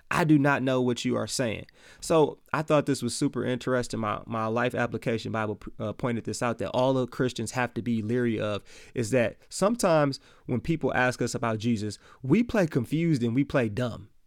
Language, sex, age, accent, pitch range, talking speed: English, male, 30-49, American, 120-155 Hz, 205 wpm